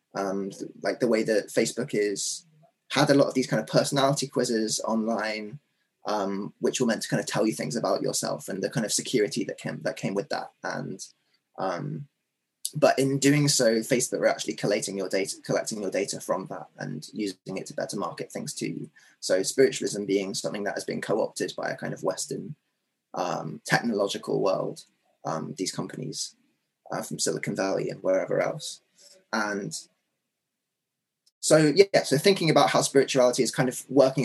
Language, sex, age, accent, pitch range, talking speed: English, male, 20-39, British, 110-140 Hz, 185 wpm